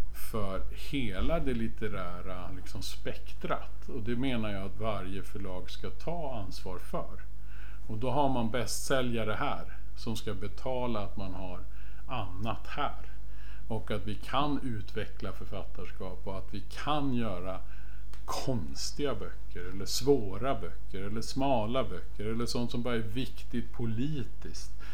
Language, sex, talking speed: Swedish, male, 135 wpm